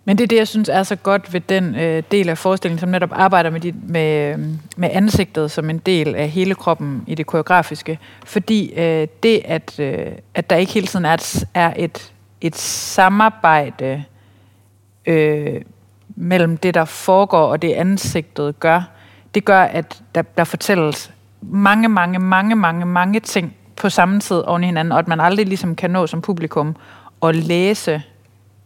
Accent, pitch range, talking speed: native, 155-190 Hz, 180 wpm